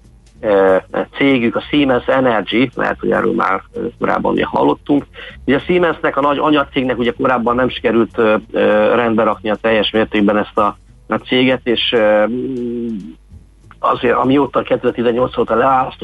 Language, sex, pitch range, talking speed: Hungarian, male, 100-125 Hz, 125 wpm